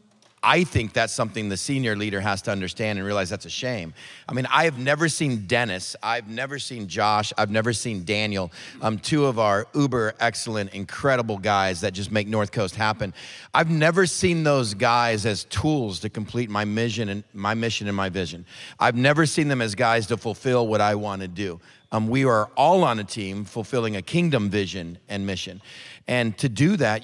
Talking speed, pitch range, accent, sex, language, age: 200 wpm, 105-130 Hz, American, male, English, 40-59